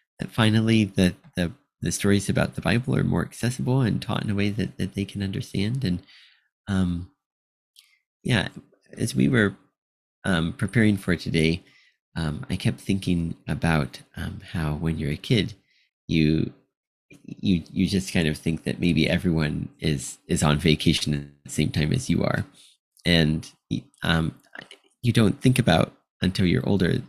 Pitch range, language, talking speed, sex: 85-115 Hz, English, 155 wpm, male